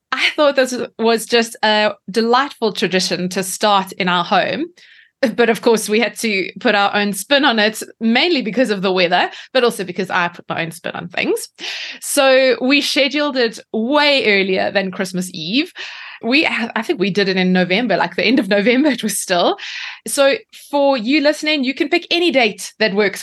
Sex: female